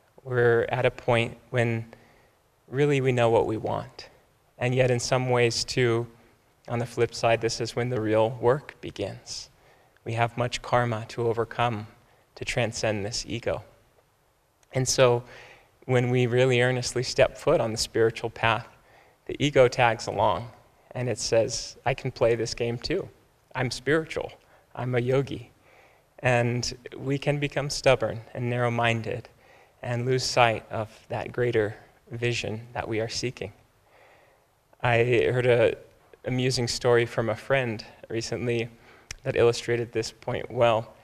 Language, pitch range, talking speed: English, 115-125 Hz, 145 wpm